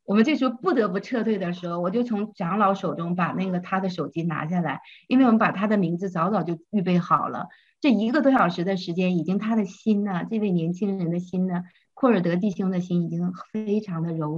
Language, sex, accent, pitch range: Chinese, female, native, 175-220 Hz